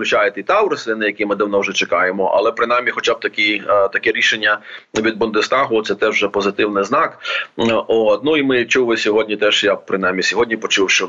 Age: 30-49